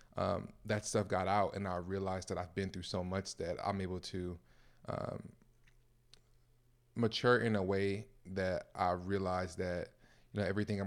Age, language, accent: 20-39, English, American